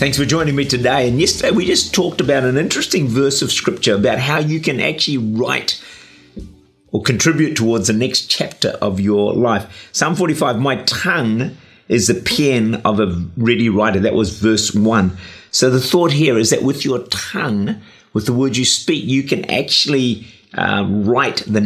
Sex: male